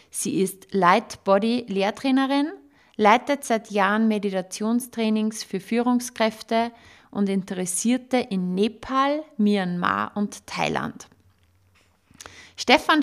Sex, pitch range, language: female, 195-235 Hz, German